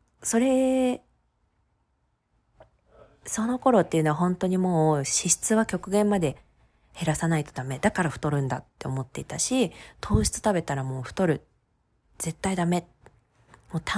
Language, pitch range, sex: Japanese, 145-215 Hz, female